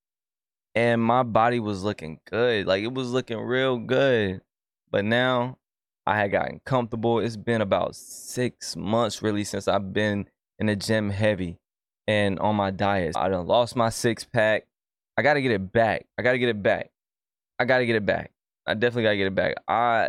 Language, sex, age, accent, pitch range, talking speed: English, male, 20-39, American, 100-120 Hz, 195 wpm